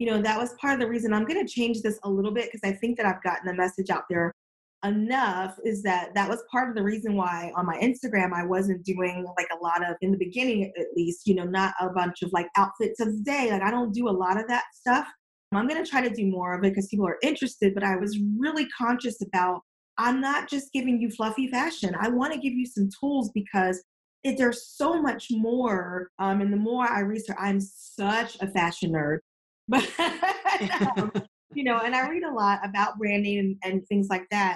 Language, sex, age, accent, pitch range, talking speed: English, female, 20-39, American, 190-245 Hz, 230 wpm